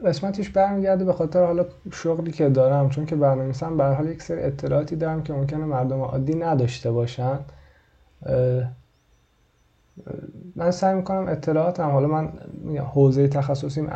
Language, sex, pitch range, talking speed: Persian, male, 130-160 Hz, 140 wpm